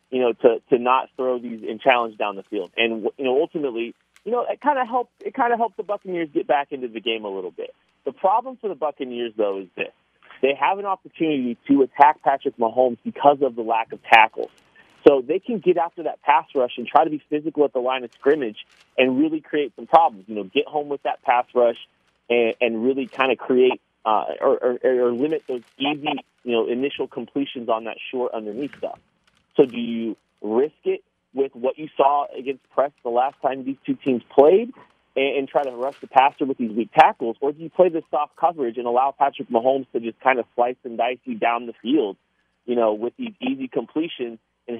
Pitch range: 120-160 Hz